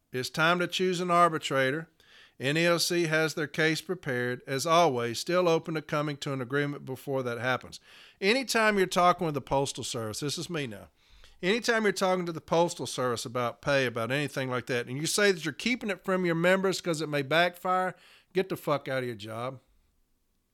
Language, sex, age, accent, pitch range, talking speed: English, male, 50-69, American, 145-230 Hz, 200 wpm